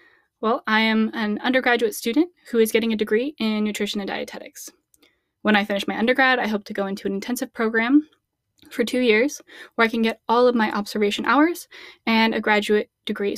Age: 10-29